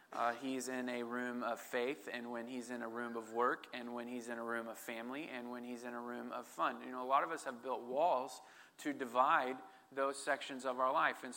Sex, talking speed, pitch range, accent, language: male, 255 wpm, 125-150 Hz, American, English